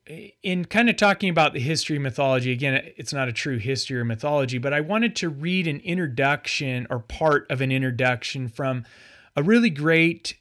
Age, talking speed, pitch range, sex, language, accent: 30-49, 190 wpm, 125-165 Hz, male, English, American